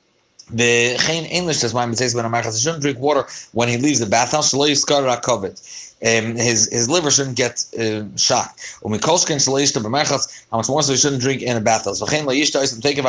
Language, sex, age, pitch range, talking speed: English, male, 30-49, 120-150 Hz, 125 wpm